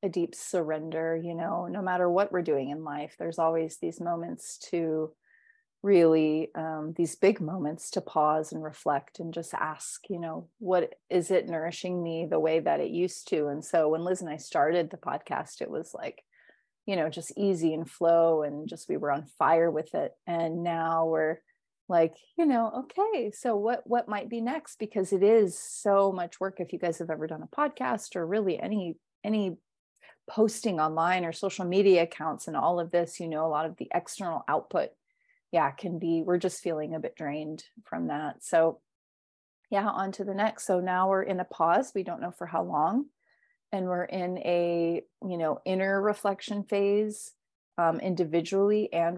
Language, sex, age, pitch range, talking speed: English, female, 30-49, 165-200 Hz, 195 wpm